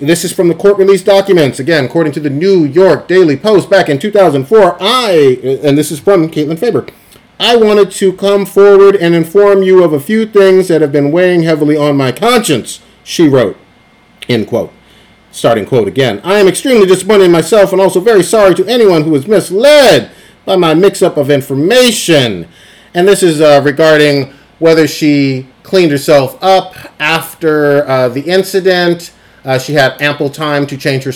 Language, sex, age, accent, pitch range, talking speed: English, male, 40-59, American, 145-195 Hz, 180 wpm